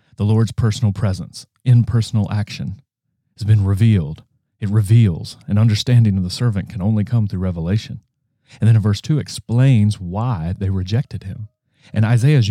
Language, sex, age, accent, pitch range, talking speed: English, male, 30-49, American, 100-120 Hz, 170 wpm